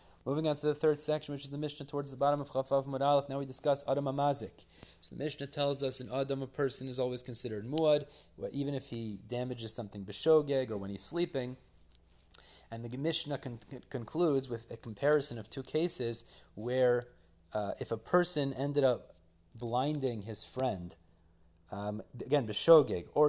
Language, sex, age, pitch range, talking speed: English, male, 30-49, 110-140 Hz, 175 wpm